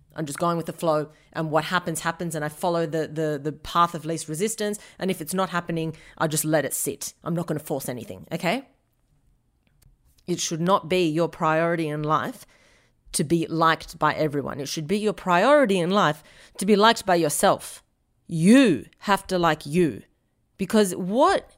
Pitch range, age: 160-220 Hz, 30-49